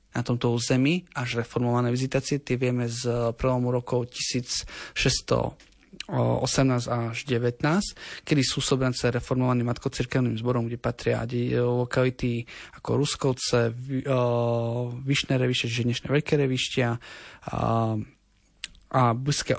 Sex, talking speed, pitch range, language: male, 100 wpm, 120-135 Hz, Slovak